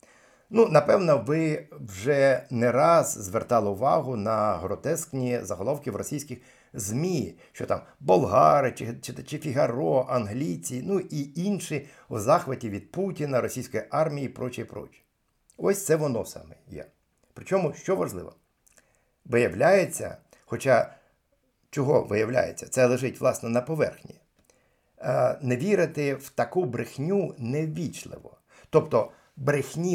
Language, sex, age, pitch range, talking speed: Ukrainian, male, 50-69, 120-165 Hz, 120 wpm